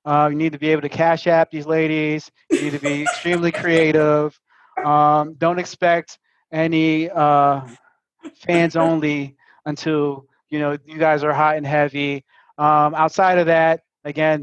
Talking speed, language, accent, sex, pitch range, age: 160 wpm, English, American, male, 150-170 Hz, 30-49